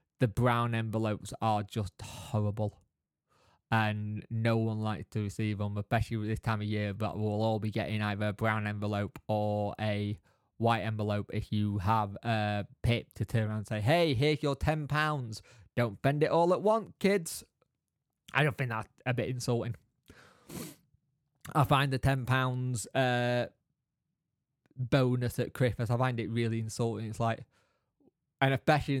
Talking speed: 165 wpm